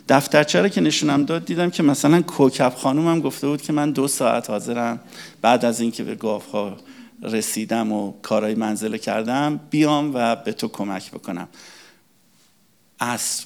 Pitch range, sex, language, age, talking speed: 110-125 Hz, male, Persian, 50-69, 150 wpm